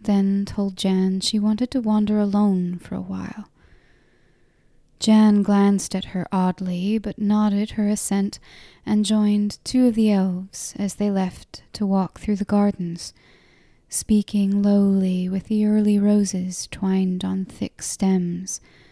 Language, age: English, 10-29